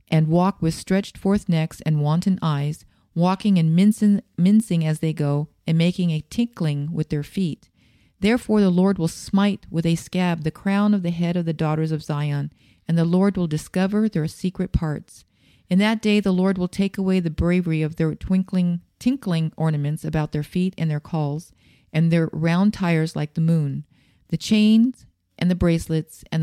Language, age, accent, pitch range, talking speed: English, 40-59, American, 155-185 Hz, 190 wpm